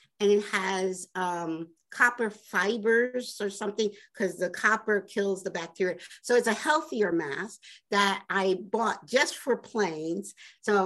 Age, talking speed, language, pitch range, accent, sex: 50-69, 145 wpm, English, 190-245 Hz, American, female